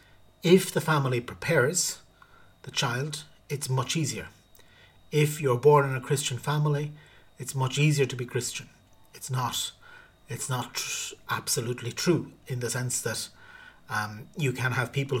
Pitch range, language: 125-150 Hz, English